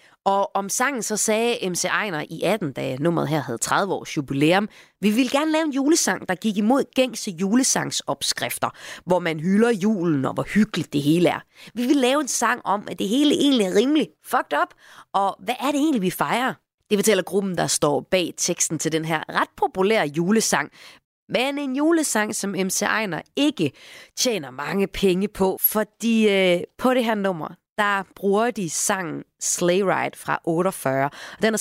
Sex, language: female, Danish